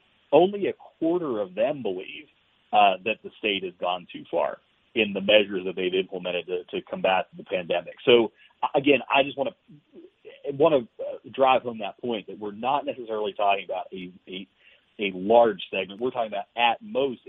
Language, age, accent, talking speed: English, 40-59, American, 185 wpm